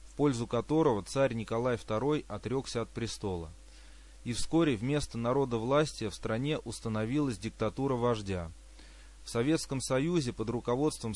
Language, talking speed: Russian, 125 wpm